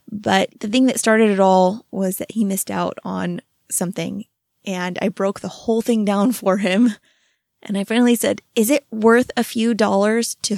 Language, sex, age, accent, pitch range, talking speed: English, female, 20-39, American, 190-235 Hz, 195 wpm